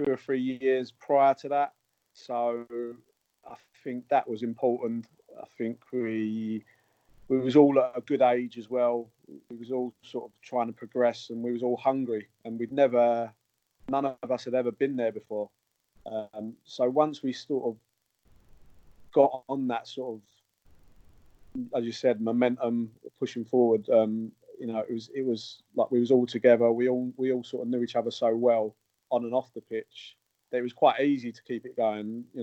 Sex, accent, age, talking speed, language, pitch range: male, British, 30-49, 190 wpm, English, 110-125 Hz